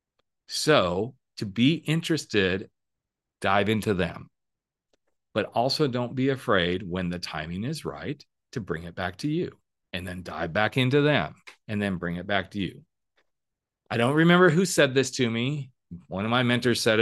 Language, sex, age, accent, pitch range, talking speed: English, male, 40-59, American, 95-125 Hz, 175 wpm